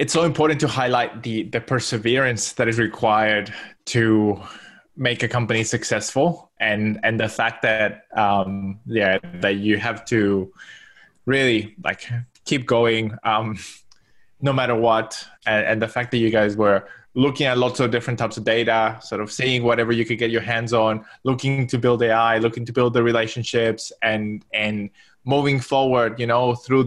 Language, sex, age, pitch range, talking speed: English, male, 20-39, 110-125 Hz, 170 wpm